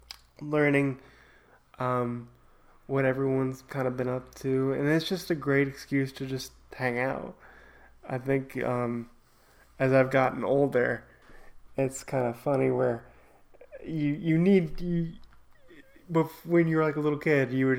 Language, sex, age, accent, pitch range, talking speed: English, male, 20-39, American, 125-145 Hz, 150 wpm